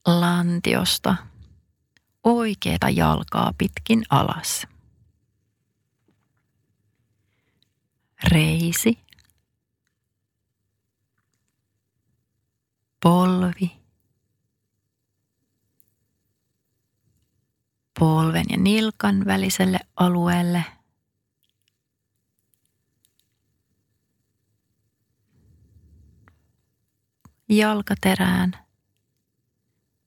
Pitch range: 105-175 Hz